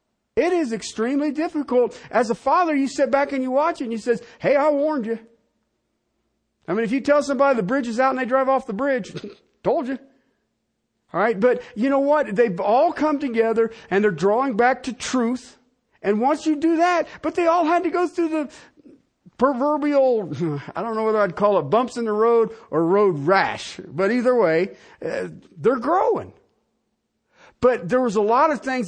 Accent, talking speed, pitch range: American, 195 wpm, 195-275 Hz